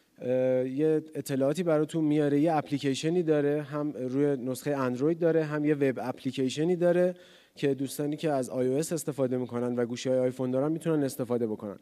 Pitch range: 130-165 Hz